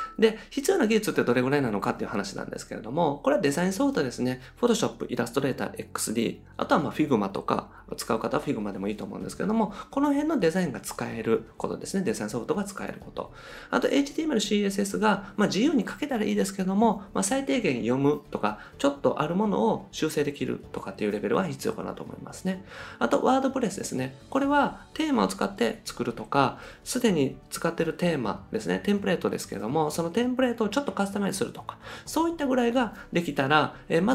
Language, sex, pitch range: Japanese, male, 145-240 Hz